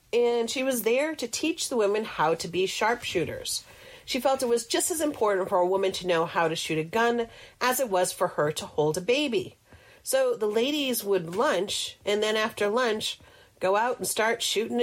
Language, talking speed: English, 210 wpm